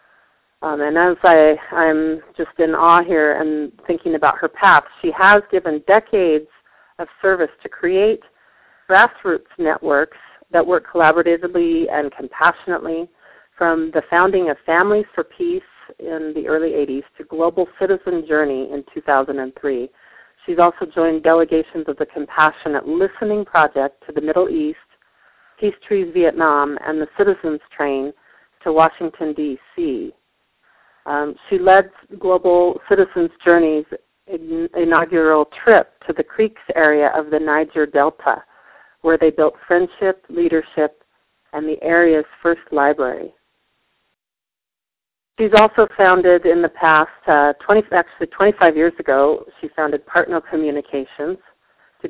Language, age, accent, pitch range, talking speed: English, 40-59, American, 155-190 Hz, 125 wpm